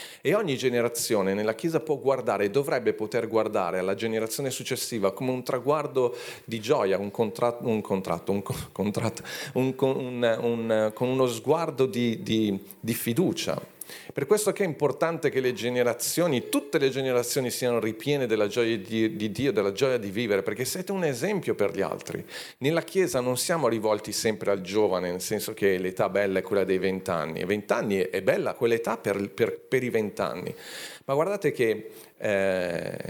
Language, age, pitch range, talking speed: Italian, 40-59, 110-140 Hz, 170 wpm